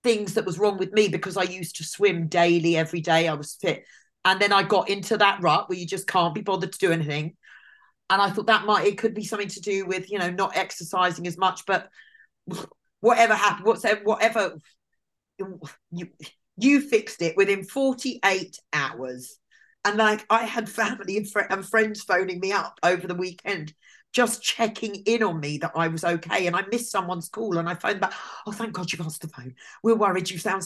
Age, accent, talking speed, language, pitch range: 40-59, British, 205 wpm, English, 170-215 Hz